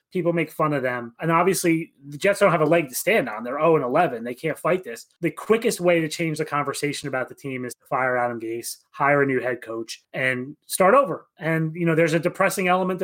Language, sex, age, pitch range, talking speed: English, male, 30-49, 150-200 Hz, 240 wpm